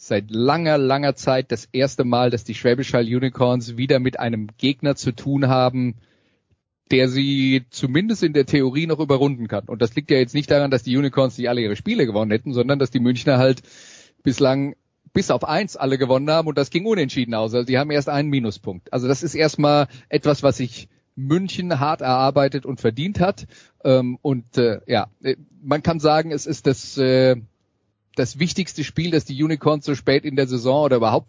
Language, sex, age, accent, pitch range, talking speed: German, male, 30-49, German, 120-150 Hz, 190 wpm